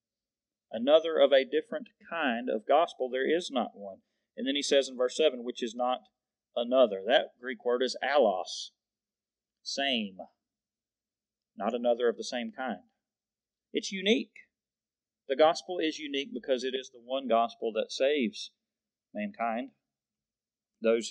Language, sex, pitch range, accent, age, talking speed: English, male, 115-195 Hz, American, 40-59, 140 wpm